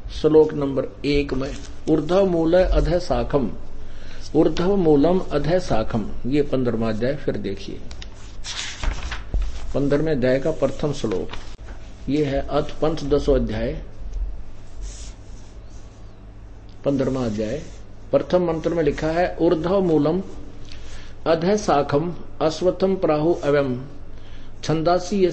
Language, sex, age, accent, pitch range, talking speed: Hindi, male, 50-69, native, 110-170 Hz, 90 wpm